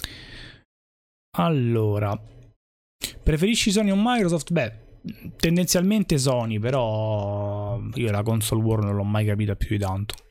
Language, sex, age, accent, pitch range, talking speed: Italian, male, 20-39, native, 115-145 Hz, 115 wpm